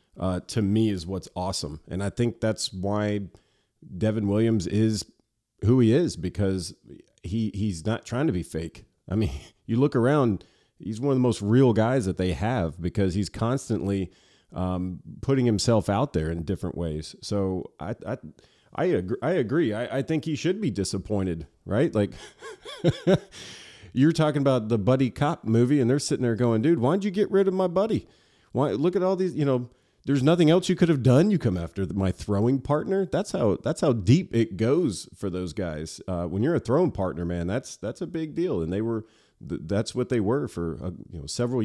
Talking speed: 200 wpm